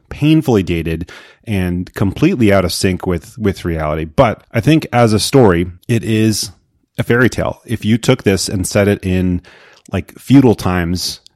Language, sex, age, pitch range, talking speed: English, male, 30-49, 85-110 Hz, 170 wpm